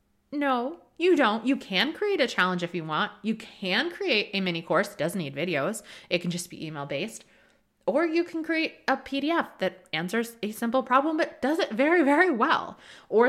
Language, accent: English, American